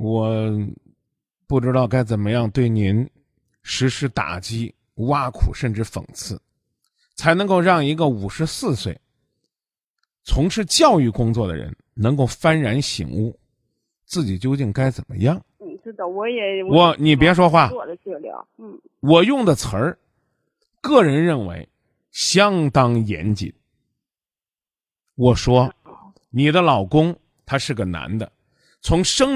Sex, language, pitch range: male, Chinese, 125-190 Hz